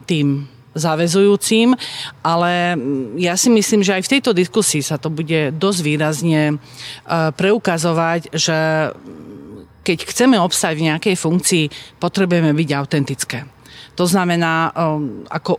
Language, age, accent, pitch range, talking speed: Czech, 40-59, native, 155-185 Hz, 120 wpm